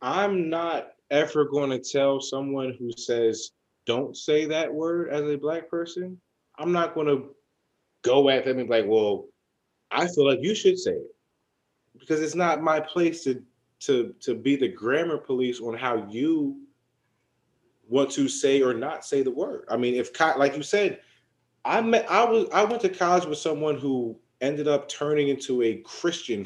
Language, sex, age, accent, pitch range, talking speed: English, male, 20-39, American, 135-195 Hz, 185 wpm